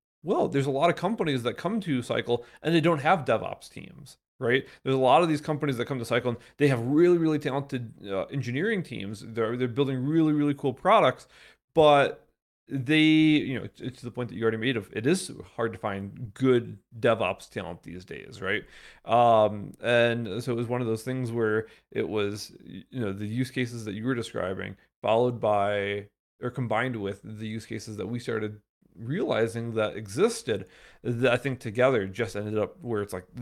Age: 30-49